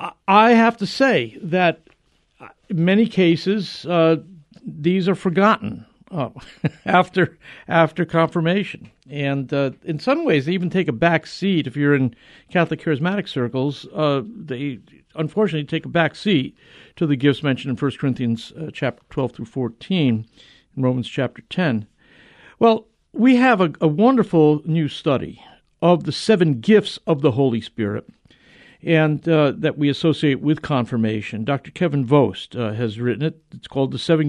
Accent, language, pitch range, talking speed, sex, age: American, English, 130-170 Hz, 160 wpm, male, 60-79